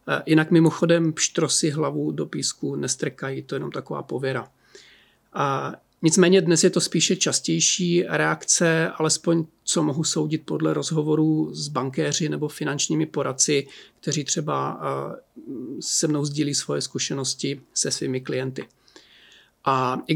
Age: 40-59